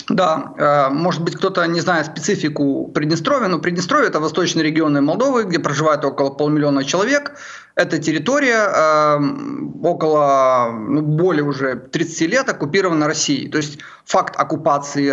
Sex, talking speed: male, 135 wpm